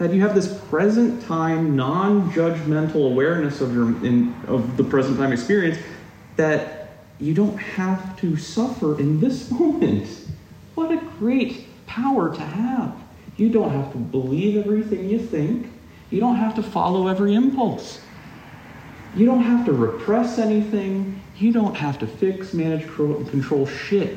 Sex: male